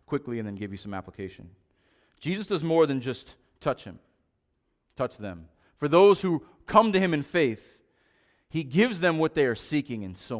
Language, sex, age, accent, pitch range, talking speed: English, male, 30-49, American, 105-140 Hz, 190 wpm